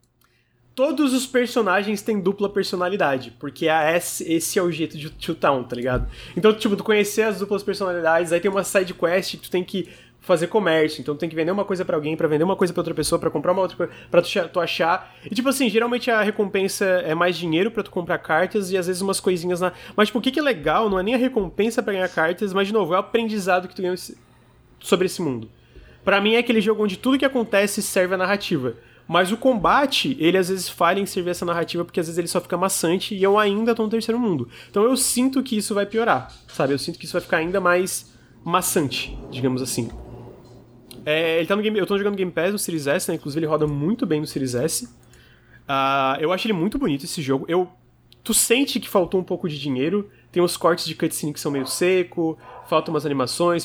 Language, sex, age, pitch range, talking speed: Portuguese, male, 20-39, 160-205 Hz, 240 wpm